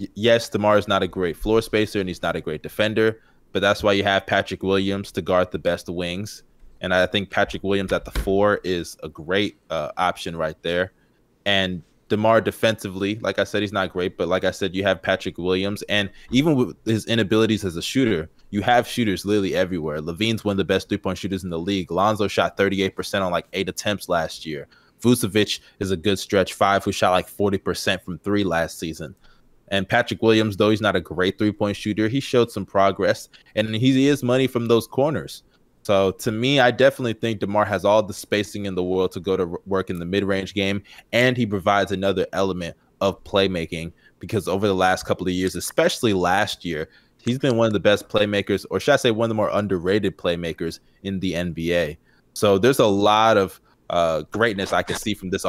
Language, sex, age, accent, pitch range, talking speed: English, male, 20-39, American, 95-105 Hz, 210 wpm